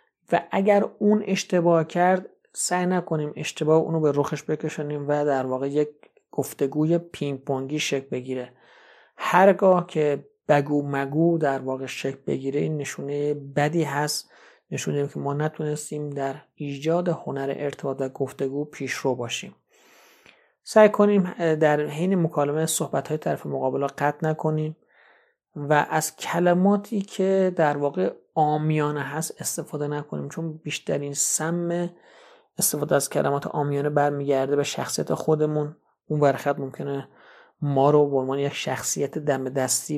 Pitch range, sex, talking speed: 140-165 Hz, male, 130 wpm